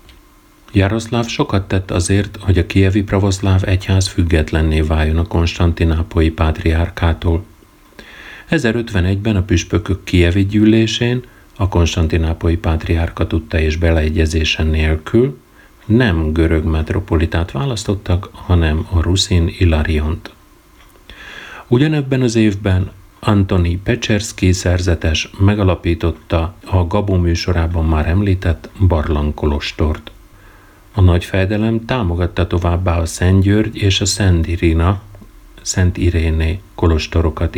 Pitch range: 85-105 Hz